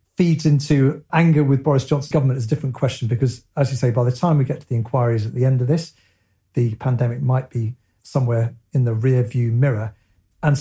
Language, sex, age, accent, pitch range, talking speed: English, male, 40-59, British, 120-145 Hz, 220 wpm